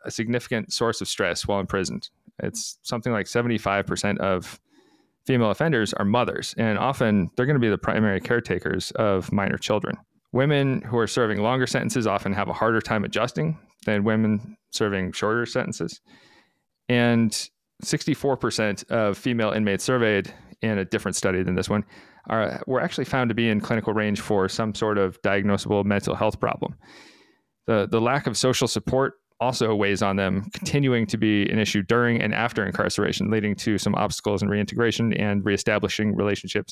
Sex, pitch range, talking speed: male, 105-125 Hz, 170 wpm